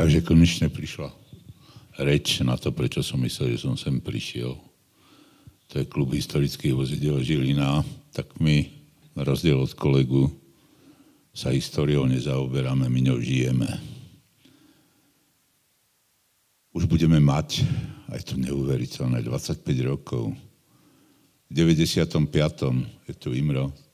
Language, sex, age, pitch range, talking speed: Slovak, male, 60-79, 65-80 Hz, 110 wpm